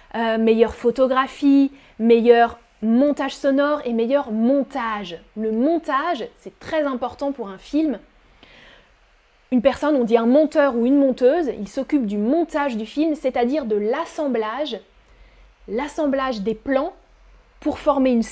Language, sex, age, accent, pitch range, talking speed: French, female, 20-39, French, 235-300 Hz, 135 wpm